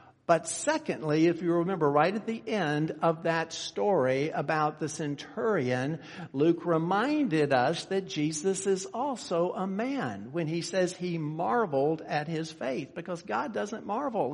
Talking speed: 150 wpm